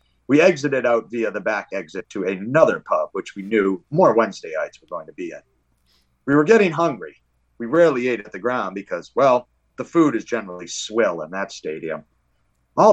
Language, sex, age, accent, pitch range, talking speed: English, male, 40-59, American, 95-145 Hz, 195 wpm